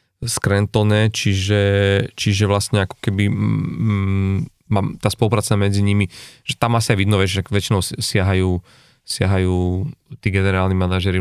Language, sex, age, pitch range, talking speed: Slovak, male, 30-49, 100-115 Hz, 120 wpm